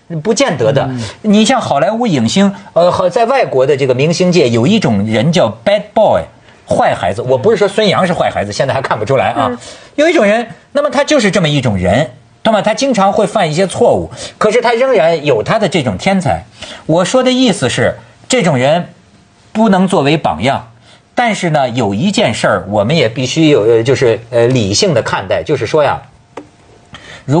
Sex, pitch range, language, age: male, 145-220 Hz, Chinese, 50-69